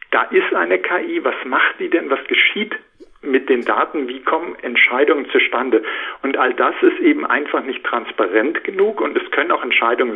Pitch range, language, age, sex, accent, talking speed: 340-435 Hz, German, 50-69, male, German, 185 wpm